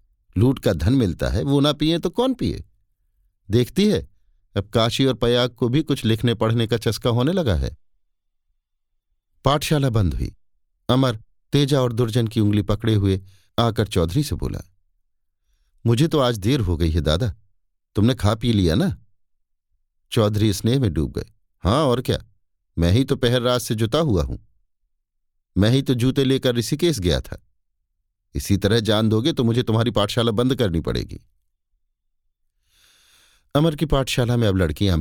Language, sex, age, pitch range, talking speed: Hindi, male, 50-69, 90-125 Hz, 165 wpm